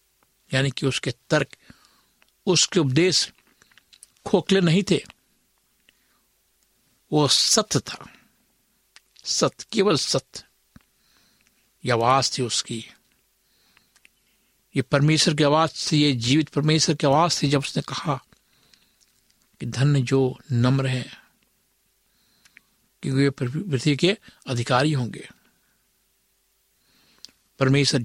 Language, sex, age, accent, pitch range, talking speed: Hindi, male, 60-79, native, 130-160 Hz, 95 wpm